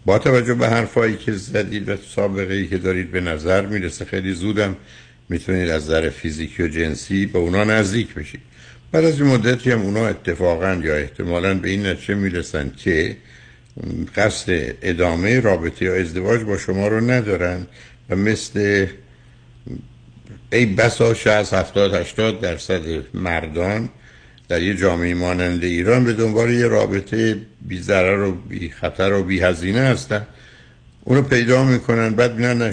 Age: 60-79